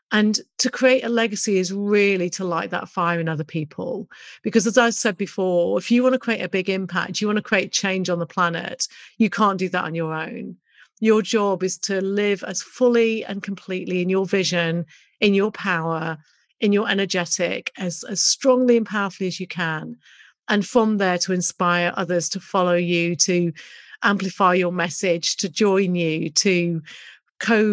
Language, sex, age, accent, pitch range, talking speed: English, female, 40-59, British, 175-215 Hz, 185 wpm